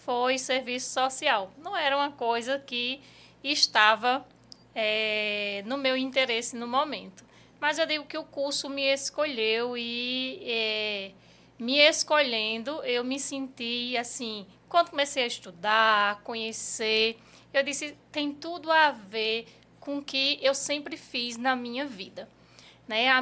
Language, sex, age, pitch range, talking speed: Portuguese, female, 20-39, 225-275 Hz, 140 wpm